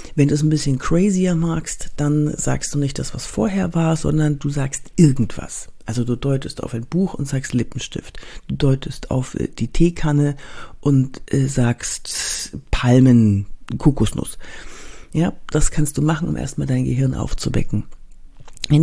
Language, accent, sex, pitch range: German, German, female, 125-160 Hz